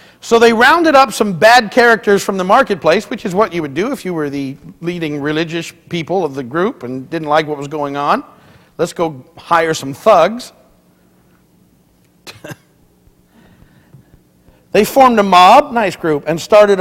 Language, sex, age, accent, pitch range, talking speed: English, male, 50-69, American, 145-200 Hz, 165 wpm